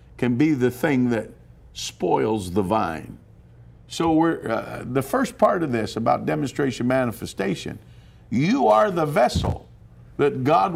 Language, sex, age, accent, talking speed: English, male, 50-69, American, 140 wpm